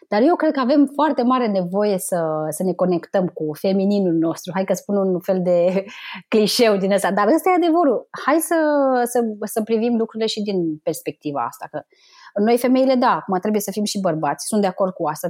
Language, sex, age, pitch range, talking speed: Romanian, female, 20-39, 185-255 Hz, 195 wpm